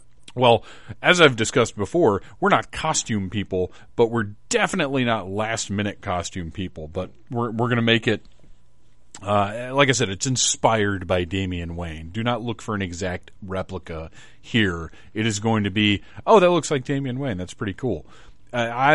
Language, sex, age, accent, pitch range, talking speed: English, male, 40-59, American, 100-120 Hz, 175 wpm